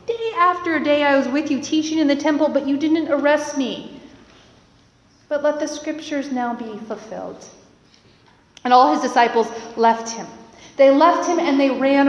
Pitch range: 225-295 Hz